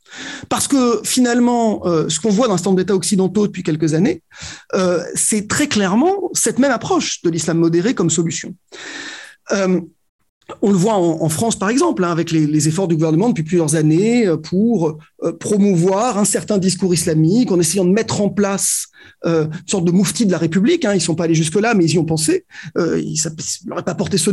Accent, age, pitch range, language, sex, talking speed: French, 30-49, 170-230 Hz, French, male, 185 wpm